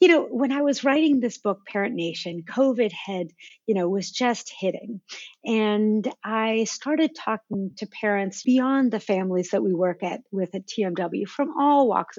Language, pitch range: English, 185-250 Hz